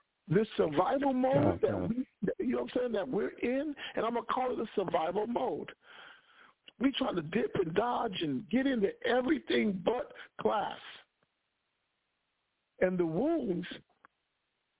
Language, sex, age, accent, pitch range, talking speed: English, male, 50-69, American, 185-265 Hz, 150 wpm